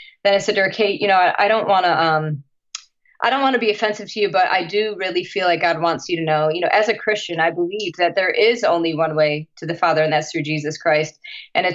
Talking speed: 280 wpm